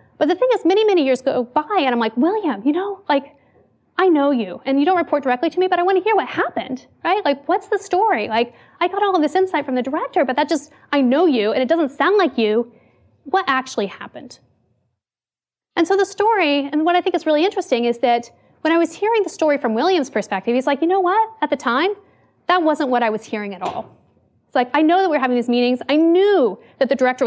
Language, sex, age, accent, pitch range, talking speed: English, female, 30-49, American, 250-350 Hz, 255 wpm